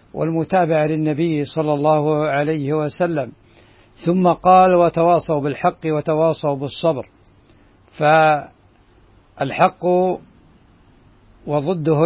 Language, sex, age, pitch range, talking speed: Arabic, male, 60-79, 120-160 Hz, 70 wpm